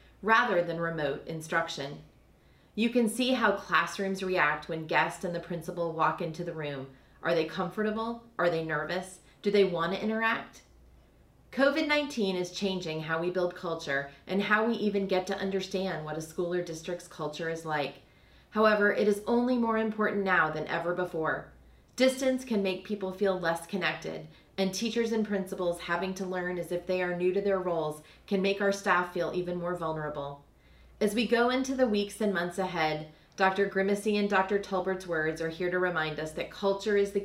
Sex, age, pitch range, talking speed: female, 30-49, 160-205 Hz, 185 wpm